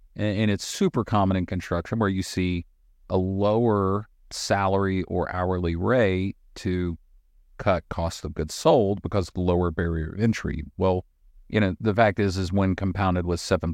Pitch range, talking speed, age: 85-105 Hz, 170 wpm, 40-59